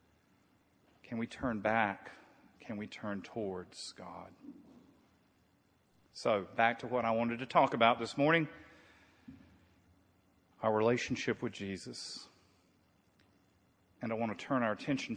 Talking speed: 125 wpm